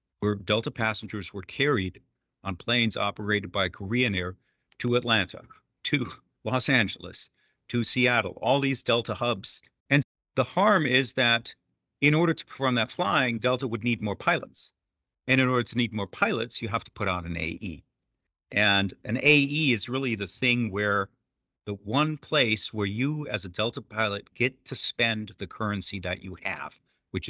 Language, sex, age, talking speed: English, male, 50-69, 170 wpm